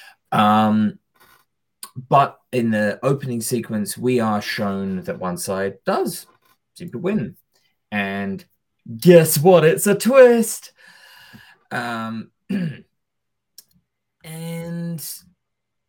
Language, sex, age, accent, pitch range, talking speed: English, male, 20-39, British, 100-150 Hz, 90 wpm